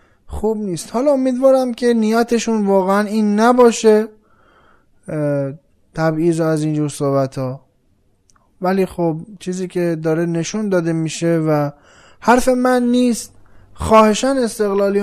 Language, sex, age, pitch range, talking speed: Persian, male, 20-39, 155-210 Hz, 110 wpm